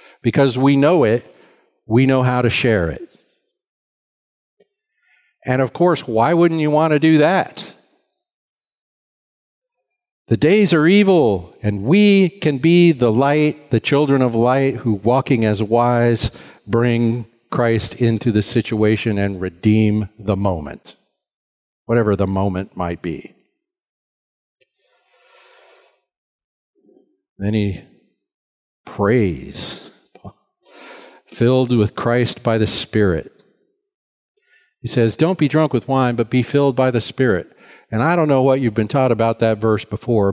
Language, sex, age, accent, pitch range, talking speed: English, male, 50-69, American, 110-150 Hz, 130 wpm